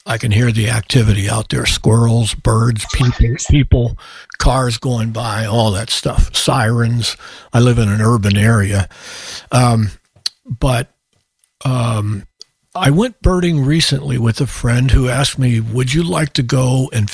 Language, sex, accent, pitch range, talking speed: English, male, American, 115-140 Hz, 145 wpm